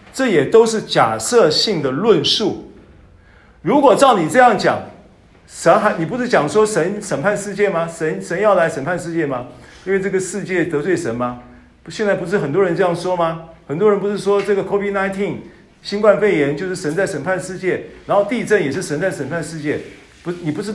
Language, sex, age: Chinese, male, 50-69